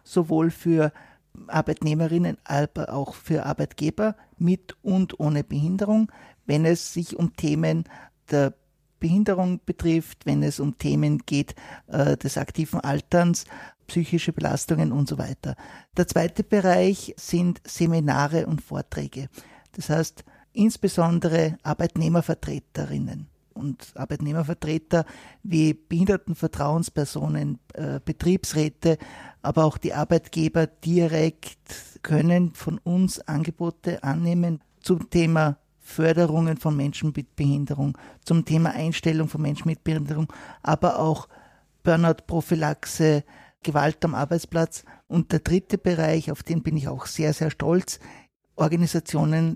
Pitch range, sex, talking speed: 150-170 Hz, male, 110 wpm